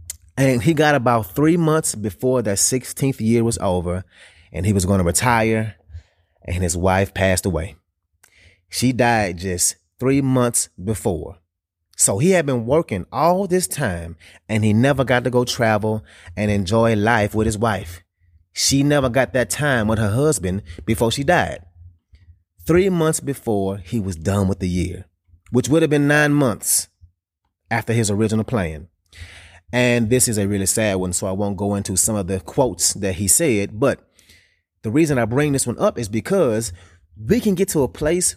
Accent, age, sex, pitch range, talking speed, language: American, 30-49, male, 90-125 Hz, 180 wpm, English